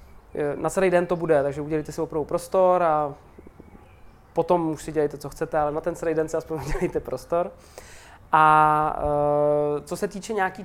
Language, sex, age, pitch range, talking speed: Czech, male, 20-39, 155-190 Hz, 175 wpm